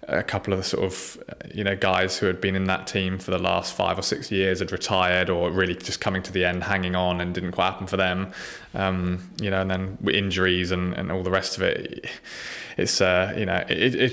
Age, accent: 20-39, British